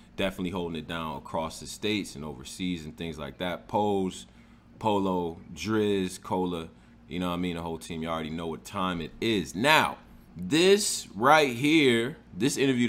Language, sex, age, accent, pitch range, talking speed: English, male, 20-39, American, 85-110 Hz, 175 wpm